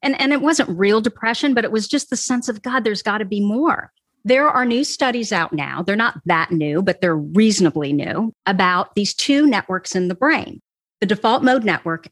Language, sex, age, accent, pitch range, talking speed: English, female, 40-59, American, 195-270 Hz, 220 wpm